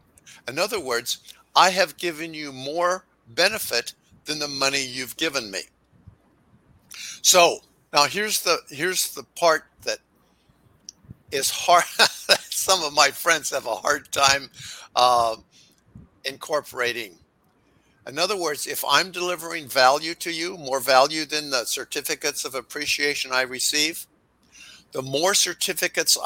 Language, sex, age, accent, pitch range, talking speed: English, male, 60-79, American, 135-165 Hz, 130 wpm